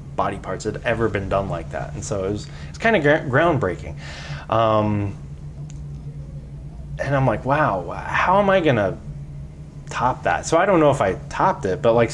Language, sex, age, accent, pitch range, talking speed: English, male, 20-39, American, 105-135 Hz, 185 wpm